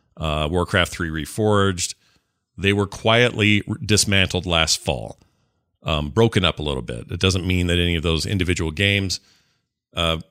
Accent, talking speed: American, 155 wpm